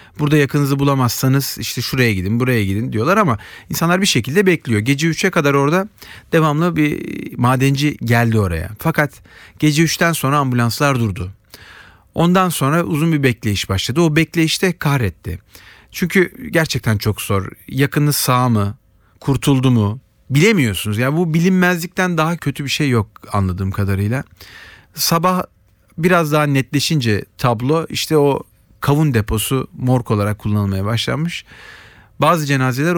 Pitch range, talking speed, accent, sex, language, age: 110-160 Hz, 135 wpm, native, male, Turkish, 40-59